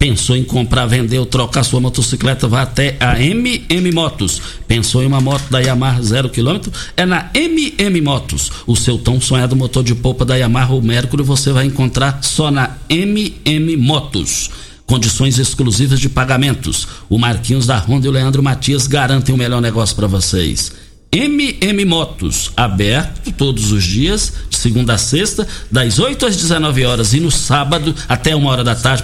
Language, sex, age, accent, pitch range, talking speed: Portuguese, male, 60-79, Brazilian, 120-155 Hz, 170 wpm